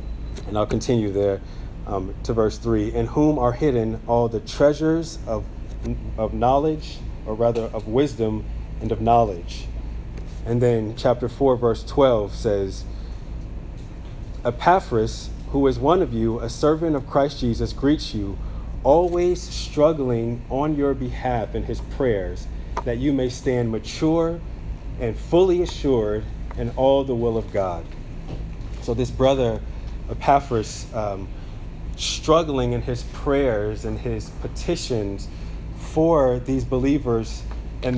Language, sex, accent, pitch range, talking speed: English, male, American, 110-135 Hz, 130 wpm